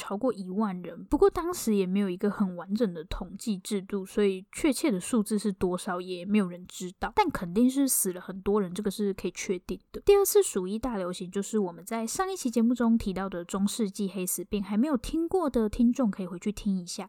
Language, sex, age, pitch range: Chinese, female, 10-29, 190-245 Hz